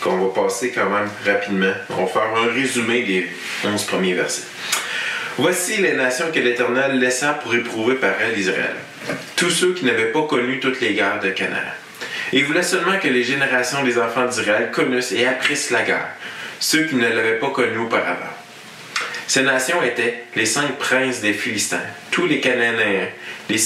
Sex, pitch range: male, 105-130 Hz